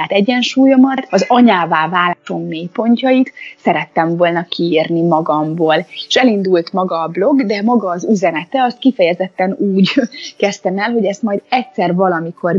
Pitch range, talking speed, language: 165-215 Hz, 140 wpm, Hungarian